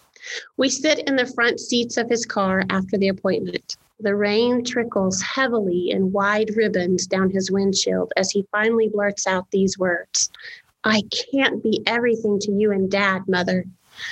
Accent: American